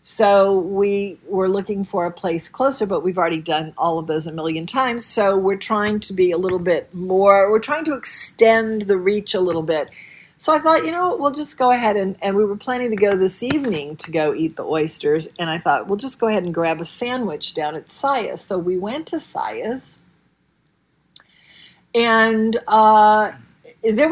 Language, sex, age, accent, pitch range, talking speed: English, female, 50-69, American, 170-220 Hz, 205 wpm